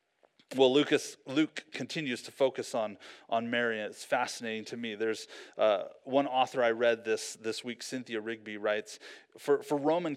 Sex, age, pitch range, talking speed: male, 30-49, 115-145 Hz, 170 wpm